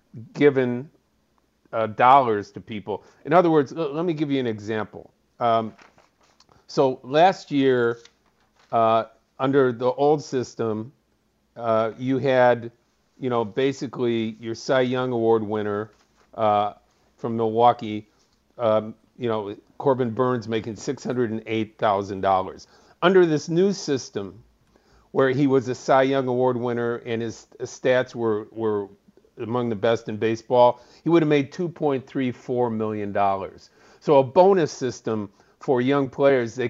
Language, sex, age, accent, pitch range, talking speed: English, male, 50-69, American, 110-135 Hz, 140 wpm